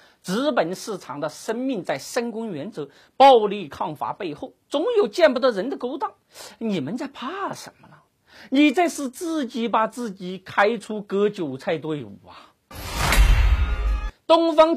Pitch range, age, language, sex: 200-305 Hz, 50-69, Chinese, male